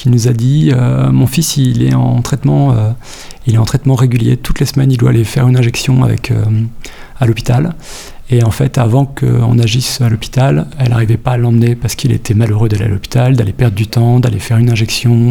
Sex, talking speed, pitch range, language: male, 235 wpm, 120-135 Hz, French